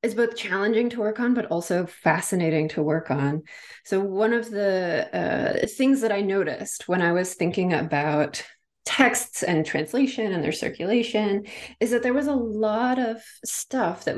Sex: female